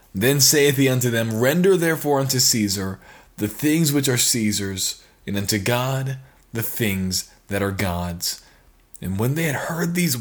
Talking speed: 165 wpm